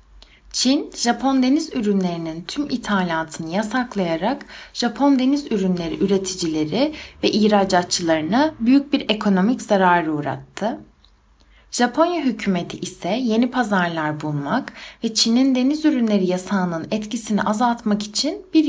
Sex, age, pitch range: female, 60-79, 180-260 Hz